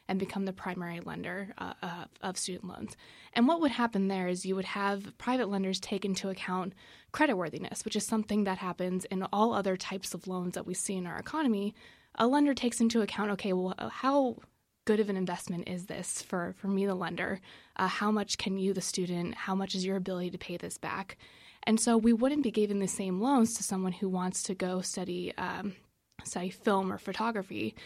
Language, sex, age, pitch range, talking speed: English, female, 20-39, 185-215 Hz, 210 wpm